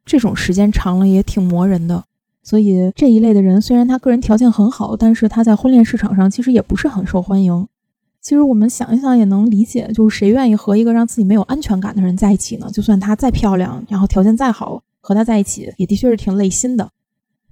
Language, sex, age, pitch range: Chinese, female, 20-39, 195-240 Hz